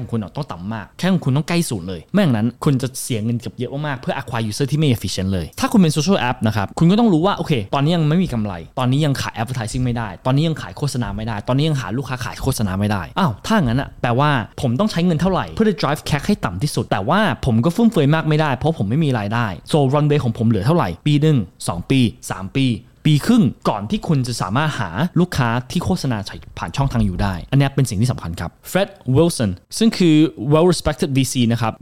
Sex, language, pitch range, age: male, Thai, 120-160 Hz, 20-39